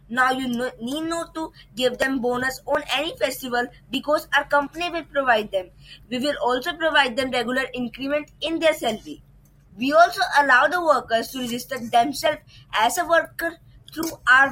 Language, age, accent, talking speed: English, 20-39, Indian, 165 wpm